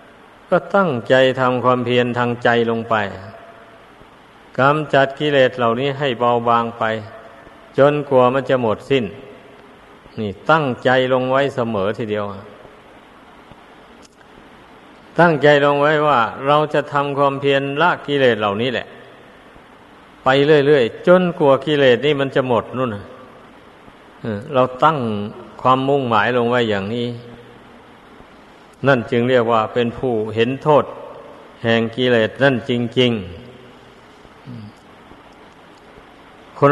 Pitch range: 120-140 Hz